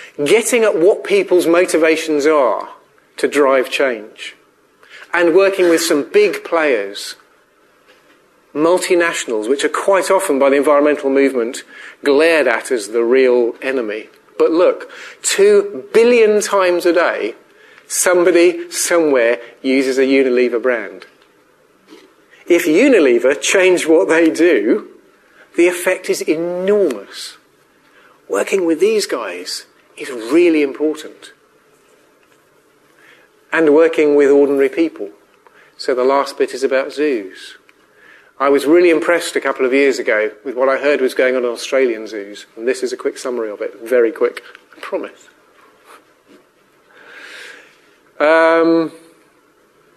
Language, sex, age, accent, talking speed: English, male, 40-59, British, 125 wpm